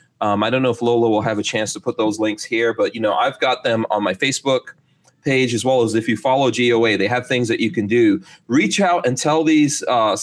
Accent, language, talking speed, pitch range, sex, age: American, English, 265 wpm, 115-150 Hz, male, 30-49